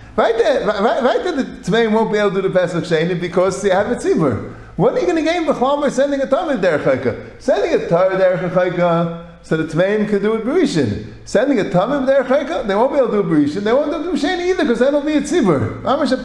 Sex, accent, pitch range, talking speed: male, American, 165-265 Hz, 260 wpm